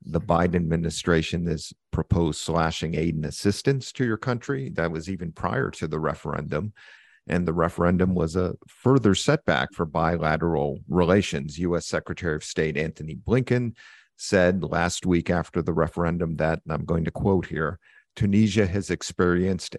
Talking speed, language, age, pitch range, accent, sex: 155 wpm, English, 50-69, 80-95 Hz, American, male